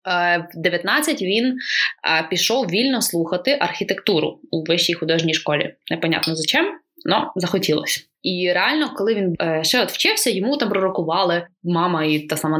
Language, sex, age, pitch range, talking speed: Ukrainian, female, 20-39, 165-220 Hz, 145 wpm